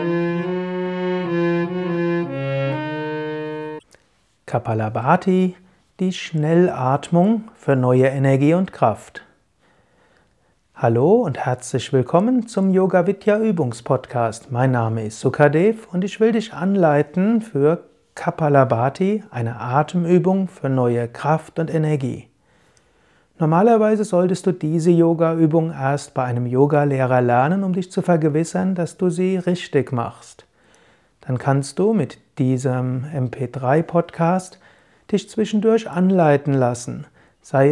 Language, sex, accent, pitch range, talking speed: German, male, German, 135-180 Hz, 100 wpm